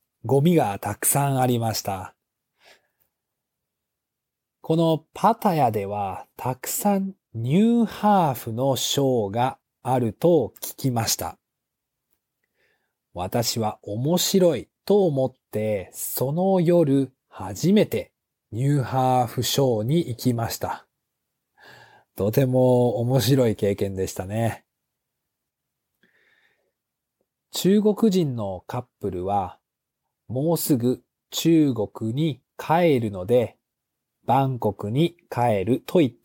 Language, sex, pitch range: Japanese, male, 115-150 Hz